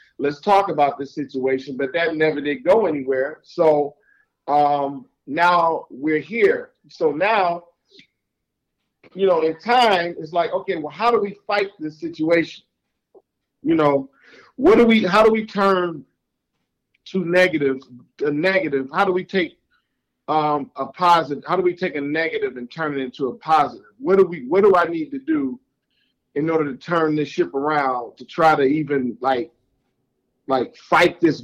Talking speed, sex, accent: 170 wpm, male, American